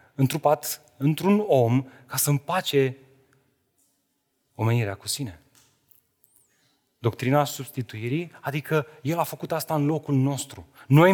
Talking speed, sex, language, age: 110 wpm, male, Romanian, 30-49